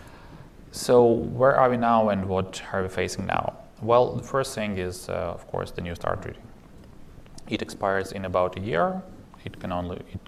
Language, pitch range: English, 90-115 Hz